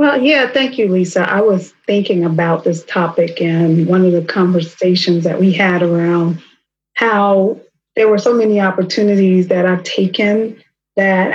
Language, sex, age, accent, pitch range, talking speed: English, female, 30-49, American, 175-200 Hz, 160 wpm